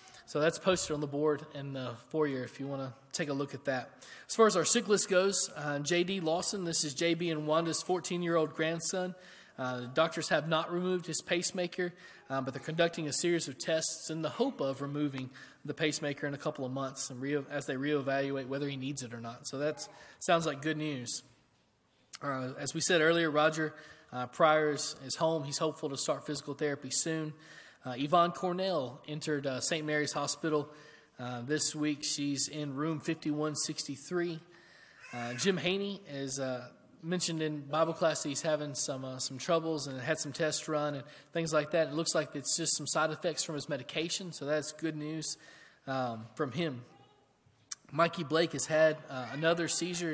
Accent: American